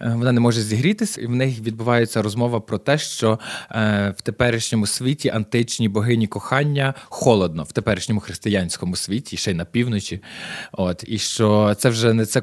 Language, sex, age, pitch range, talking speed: Ukrainian, male, 20-39, 110-145 Hz, 165 wpm